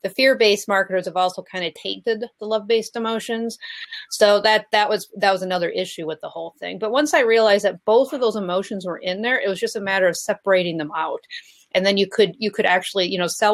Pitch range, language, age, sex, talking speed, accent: 180-235 Hz, English, 30-49, female, 240 wpm, American